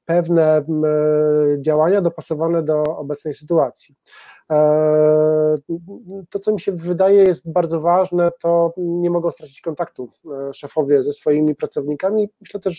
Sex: male